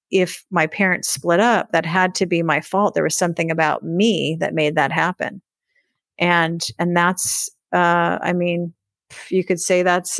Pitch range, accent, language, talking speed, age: 170-200 Hz, American, English, 175 wpm, 40-59